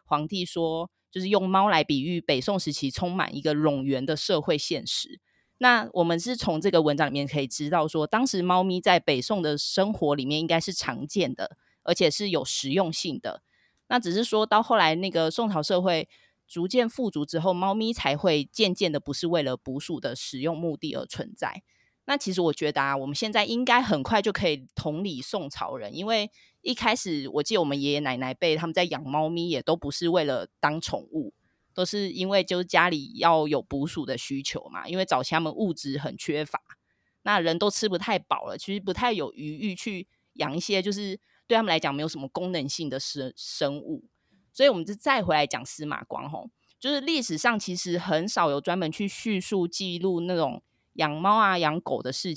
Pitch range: 150-205 Hz